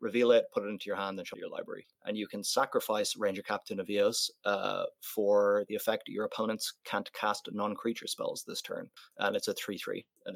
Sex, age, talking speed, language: male, 30-49, 210 wpm, English